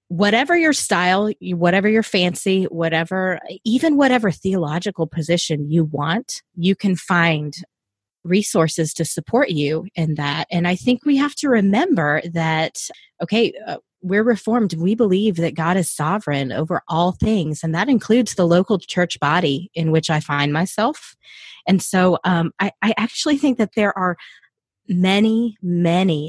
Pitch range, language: 160-205 Hz, English